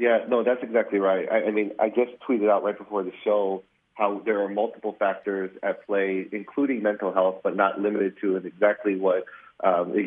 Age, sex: 40-59, male